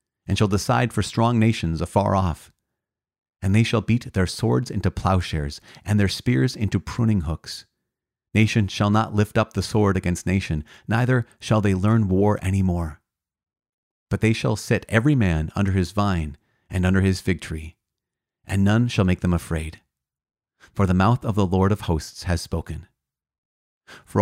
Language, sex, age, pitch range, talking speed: English, male, 30-49, 90-115 Hz, 170 wpm